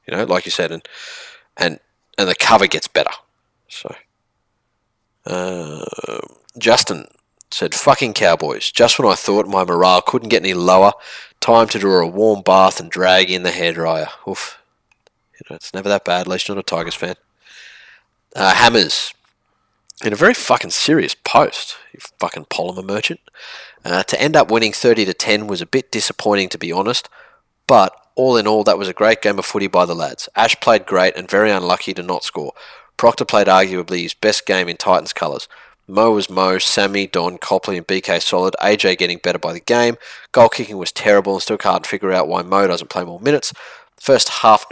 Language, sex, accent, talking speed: English, male, Australian, 190 wpm